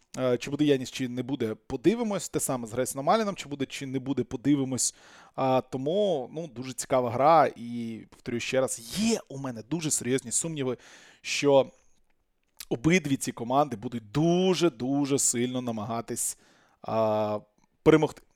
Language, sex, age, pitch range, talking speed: Ukrainian, male, 20-39, 125-185 Hz, 135 wpm